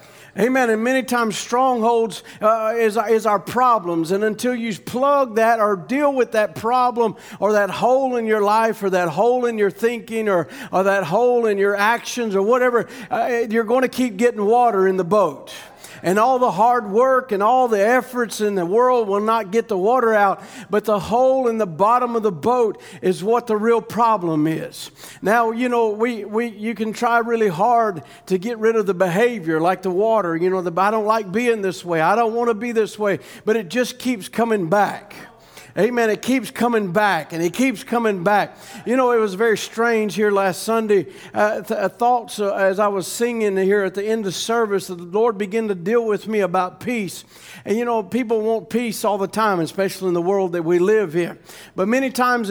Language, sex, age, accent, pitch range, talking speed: English, male, 50-69, American, 200-235 Hz, 215 wpm